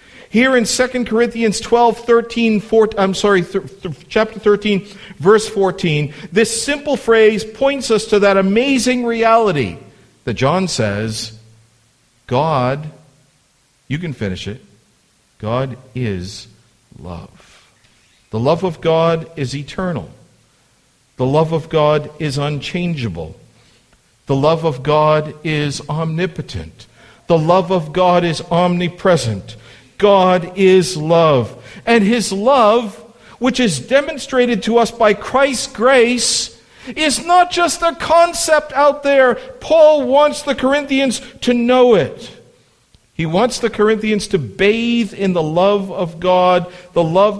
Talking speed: 125 wpm